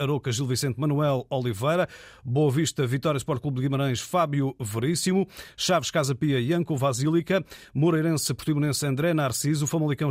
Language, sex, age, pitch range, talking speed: Portuguese, male, 50-69, 120-150 Hz, 145 wpm